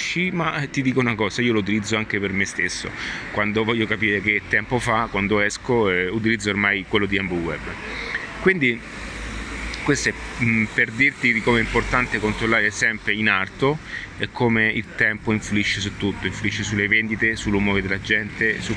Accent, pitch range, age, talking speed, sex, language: native, 100-115 Hz, 30-49, 170 wpm, male, Italian